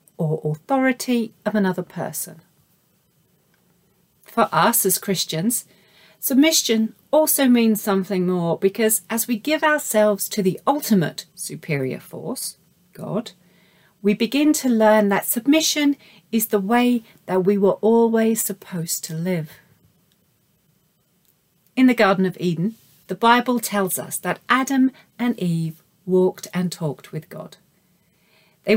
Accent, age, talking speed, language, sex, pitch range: British, 40-59, 125 wpm, English, female, 175-230 Hz